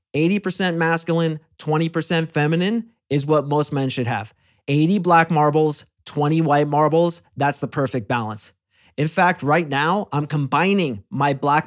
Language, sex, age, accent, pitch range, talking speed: English, male, 30-49, American, 135-165 Hz, 140 wpm